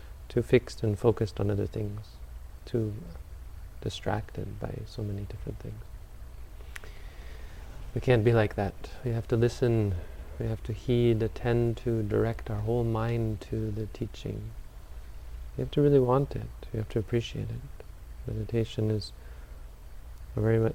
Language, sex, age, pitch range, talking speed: English, male, 30-49, 75-115 Hz, 145 wpm